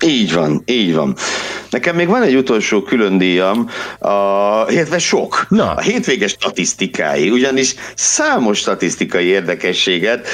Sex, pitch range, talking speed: male, 85-115 Hz, 115 wpm